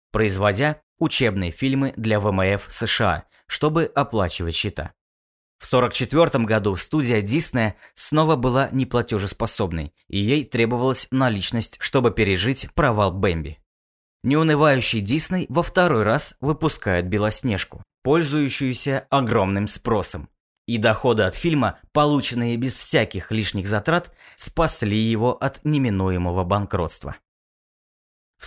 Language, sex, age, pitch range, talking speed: Russian, male, 20-39, 100-140 Hz, 110 wpm